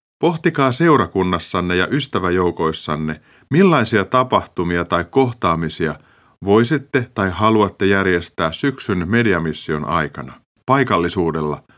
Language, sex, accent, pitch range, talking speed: Finnish, male, native, 85-125 Hz, 80 wpm